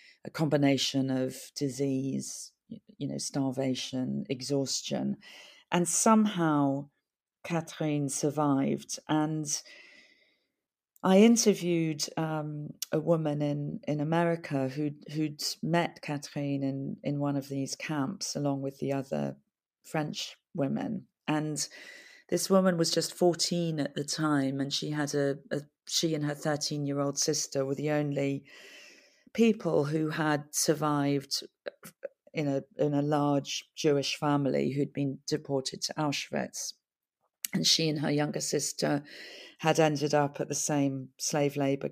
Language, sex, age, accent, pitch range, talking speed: English, female, 40-59, British, 140-165 Hz, 130 wpm